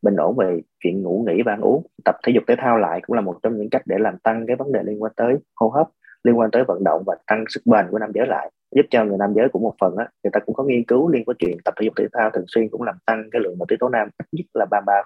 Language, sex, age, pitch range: Vietnamese, male, 20-39, 100-120 Hz